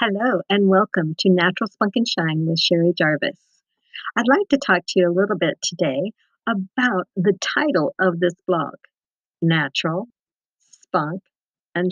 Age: 50-69